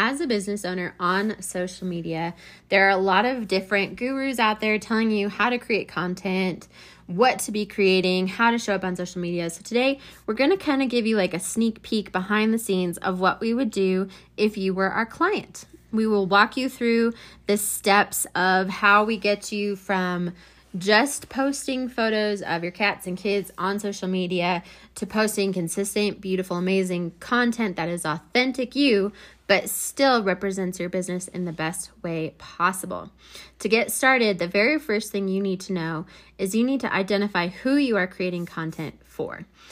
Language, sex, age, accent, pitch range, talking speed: English, female, 20-39, American, 180-215 Hz, 190 wpm